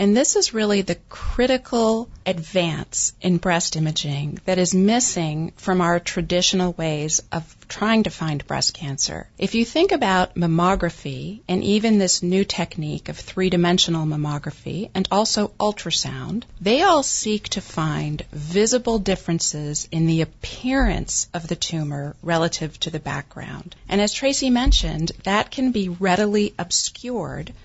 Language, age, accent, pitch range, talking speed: English, 40-59, American, 160-210 Hz, 140 wpm